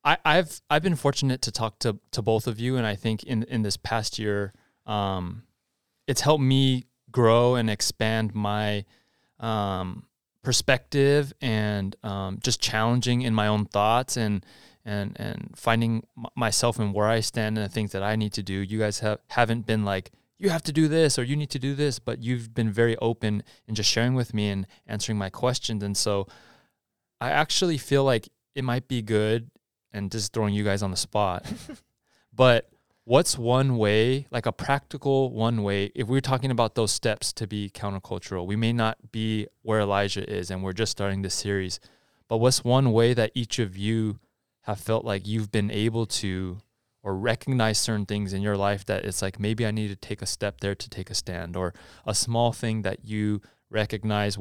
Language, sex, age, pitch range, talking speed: English, male, 20-39, 100-120 Hz, 200 wpm